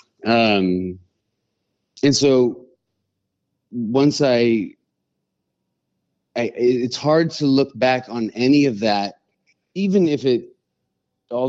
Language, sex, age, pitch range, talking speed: English, male, 30-49, 110-145 Hz, 100 wpm